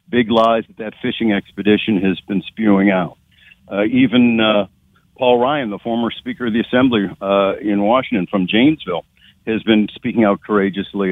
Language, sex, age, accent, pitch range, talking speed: English, male, 60-79, American, 100-125 Hz, 165 wpm